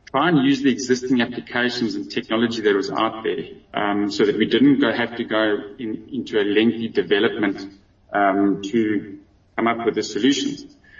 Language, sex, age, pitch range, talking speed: English, male, 20-39, 105-125 Hz, 175 wpm